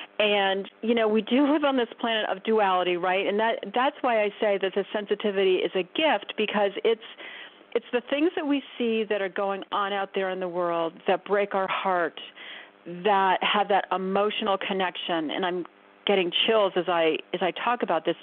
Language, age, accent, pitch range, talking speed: English, 40-59, American, 180-220 Hz, 200 wpm